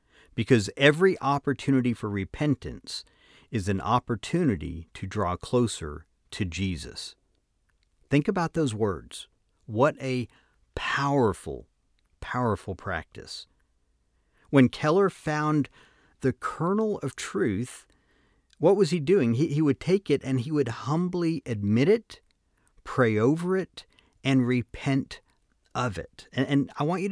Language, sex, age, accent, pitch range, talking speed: English, male, 50-69, American, 100-145 Hz, 125 wpm